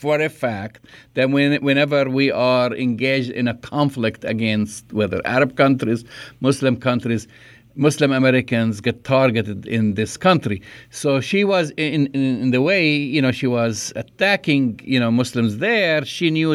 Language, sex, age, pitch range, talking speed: English, male, 50-69, 120-145 Hz, 155 wpm